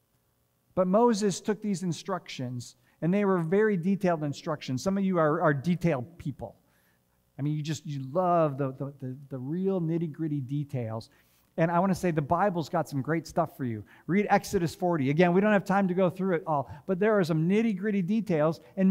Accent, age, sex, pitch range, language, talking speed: American, 50-69, male, 135-205 Hz, English, 205 wpm